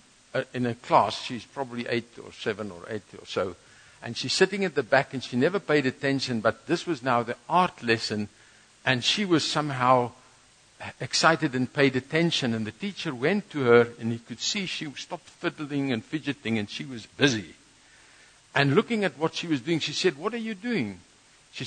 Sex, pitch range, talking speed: male, 135-205 Hz, 195 wpm